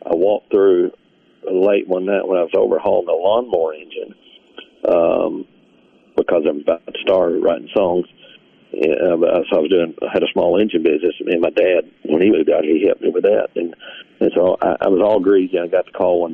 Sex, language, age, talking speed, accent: male, English, 50-69, 215 wpm, American